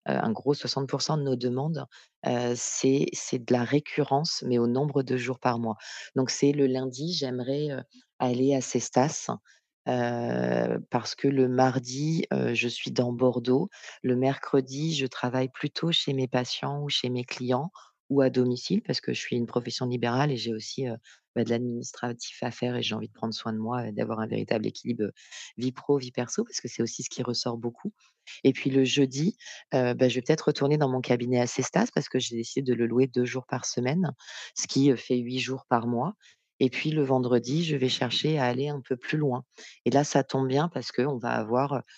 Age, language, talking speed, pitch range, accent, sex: 30-49, French, 215 wpm, 120-140 Hz, French, female